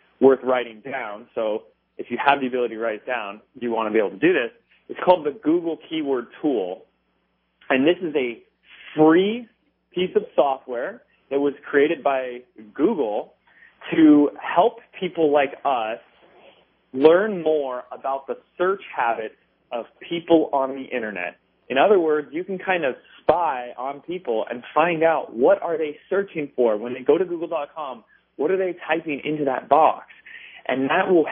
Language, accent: English, American